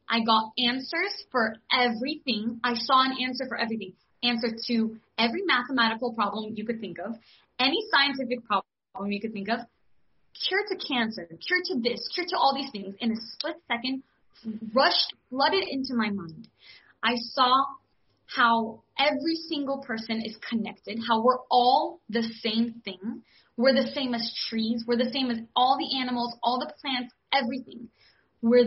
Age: 20-39